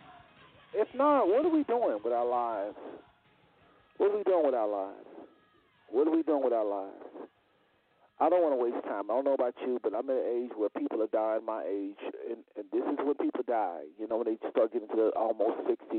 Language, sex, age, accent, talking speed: English, male, 50-69, American, 235 wpm